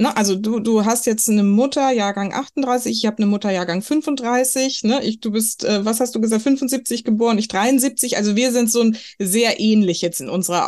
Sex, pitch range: female, 180-230 Hz